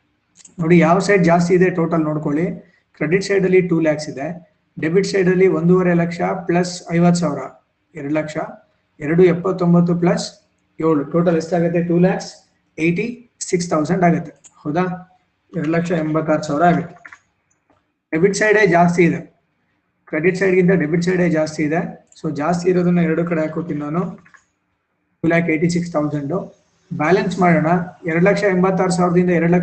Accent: native